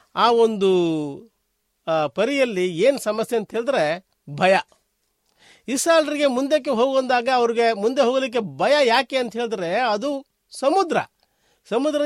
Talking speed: 100 wpm